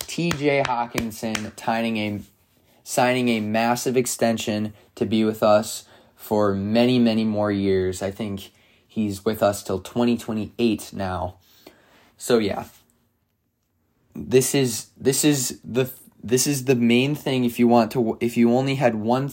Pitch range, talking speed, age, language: 100-120 Hz, 150 wpm, 20-39, English